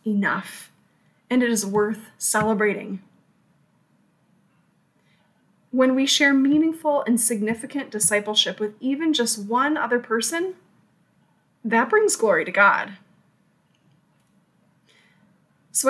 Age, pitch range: 20-39, 205-270 Hz